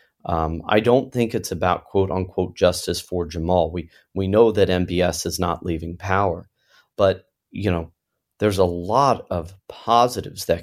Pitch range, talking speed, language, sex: 90-105 Hz, 160 wpm, English, male